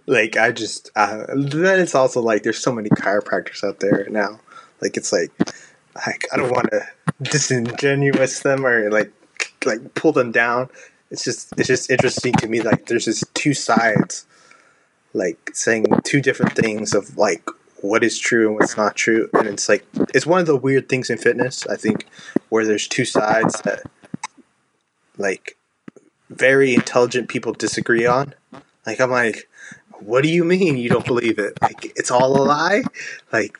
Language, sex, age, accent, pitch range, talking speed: English, male, 20-39, American, 110-135 Hz, 175 wpm